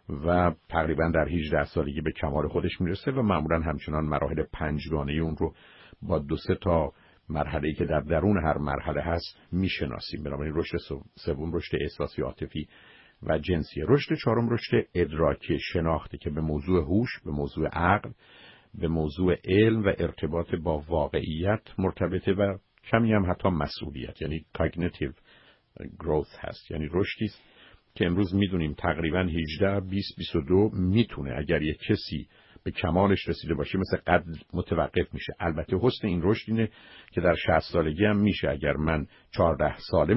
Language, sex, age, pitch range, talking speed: Persian, male, 50-69, 75-95 Hz, 155 wpm